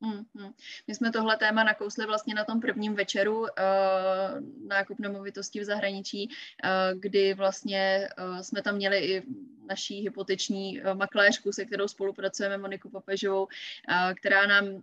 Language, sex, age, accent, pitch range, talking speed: Czech, female, 20-39, native, 190-205 Hz, 120 wpm